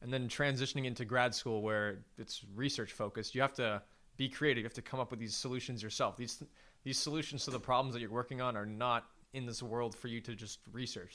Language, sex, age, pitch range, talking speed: English, male, 20-39, 110-135 Hz, 235 wpm